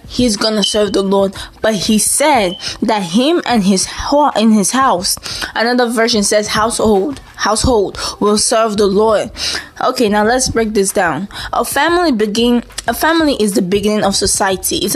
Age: 10-29